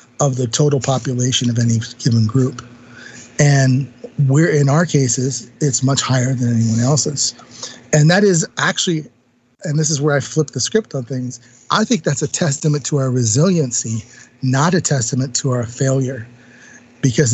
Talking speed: 165 wpm